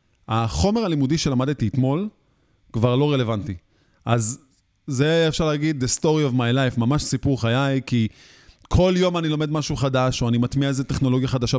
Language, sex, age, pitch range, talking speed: Hebrew, male, 30-49, 120-160 Hz, 165 wpm